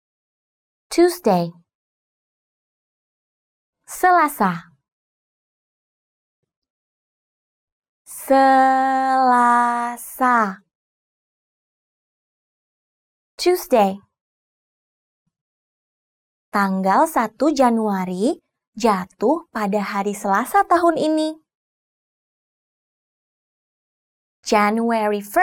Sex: female